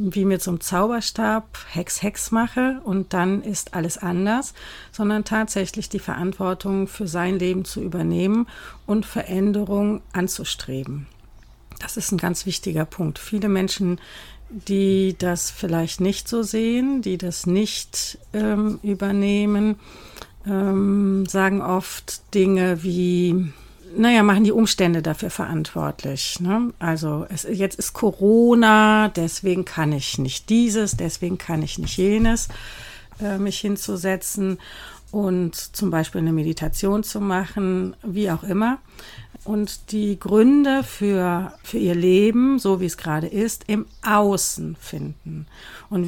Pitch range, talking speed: 175-210 Hz, 125 wpm